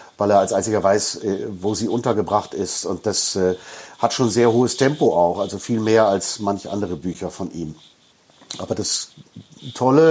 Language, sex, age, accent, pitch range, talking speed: German, male, 50-69, German, 105-120 Hz, 180 wpm